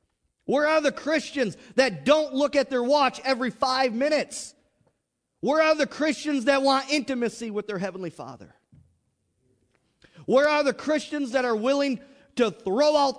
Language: English